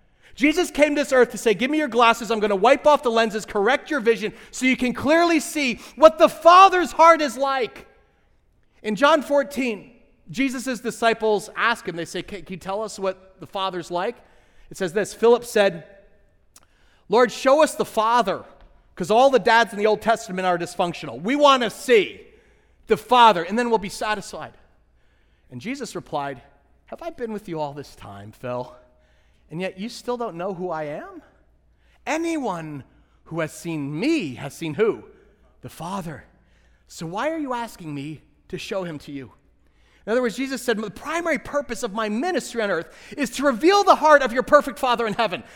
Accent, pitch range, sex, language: American, 180-265 Hz, male, English